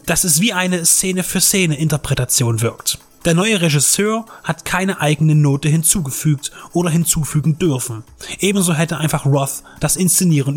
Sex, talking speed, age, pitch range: male, 150 wpm, 30-49, 145-185 Hz